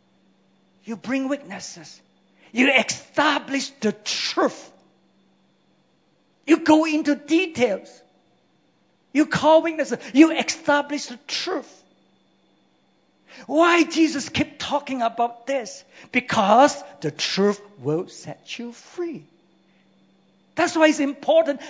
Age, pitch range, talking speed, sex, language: 50-69, 205-300 Hz, 95 wpm, male, English